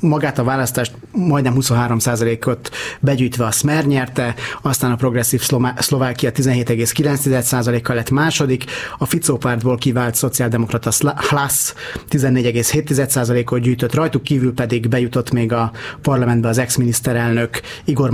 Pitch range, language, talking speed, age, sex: 120-140 Hz, Hungarian, 120 wpm, 30-49, male